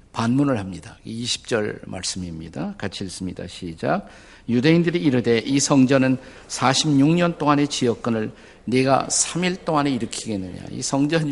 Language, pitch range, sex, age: Korean, 105-150 Hz, male, 50-69